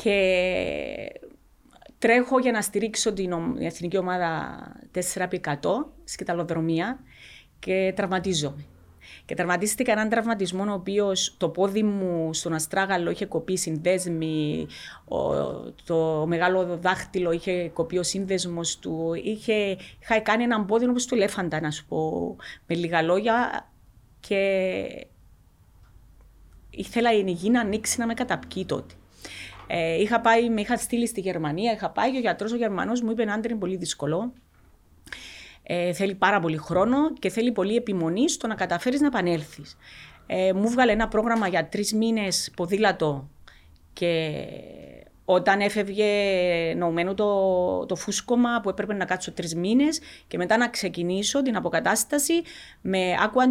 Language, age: Greek, 30-49